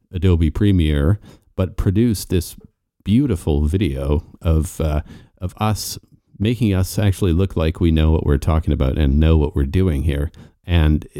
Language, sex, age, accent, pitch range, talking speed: English, male, 40-59, American, 80-100 Hz, 155 wpm